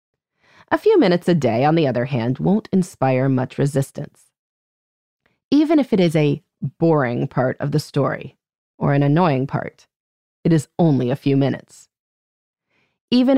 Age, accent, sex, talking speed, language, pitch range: 30-49, American, female, 155 wpm, English, 140-205 Hz